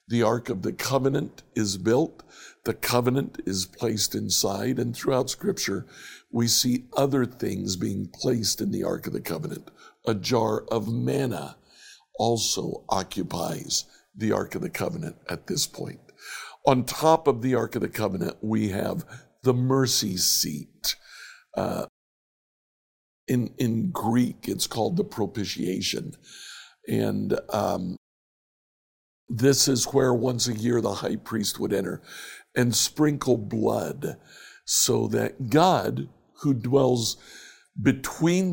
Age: 60-79